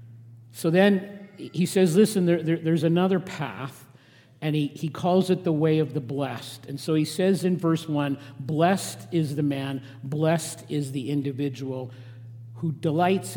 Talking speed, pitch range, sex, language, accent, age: 155 wpm, 135-170 Hz, male, English, American, 50-69